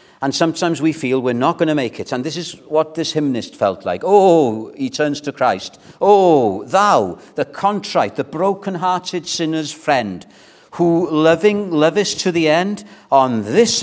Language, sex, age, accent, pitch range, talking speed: English, male, 50-69, British, 150-205 Hz, 170 wpm